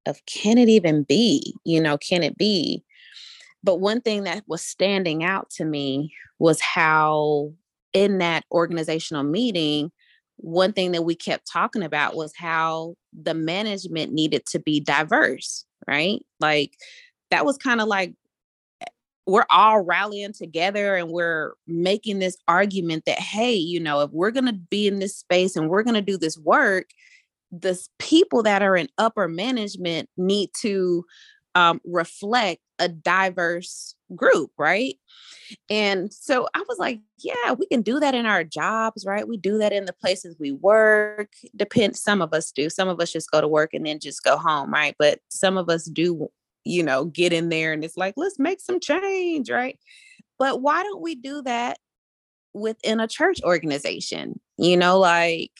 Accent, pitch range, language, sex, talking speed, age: American, 165-220 Hz, English, female, 170 wpm, 20-39